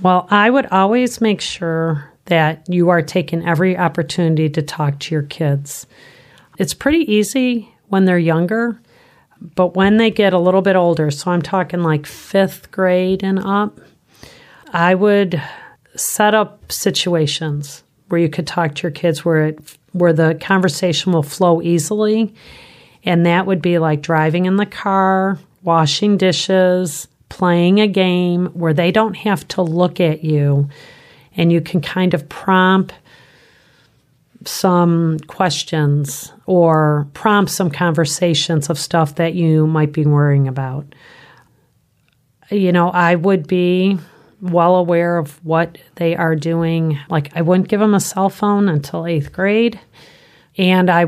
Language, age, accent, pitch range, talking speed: English, 40-59, American, 160-190 Hz, 150 wpm